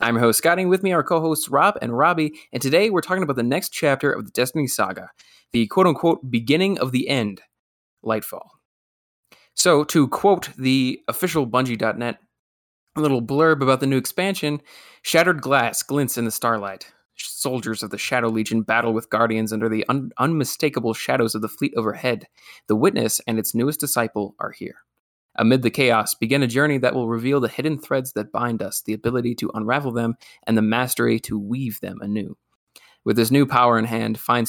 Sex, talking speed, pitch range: male, 190 wpm, 110-140 Hz